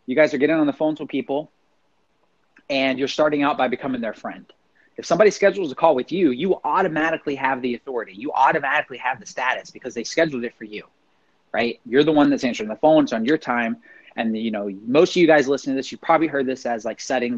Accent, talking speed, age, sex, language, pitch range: American, 235 wpm, 30-49, male, English, 120-150 Hz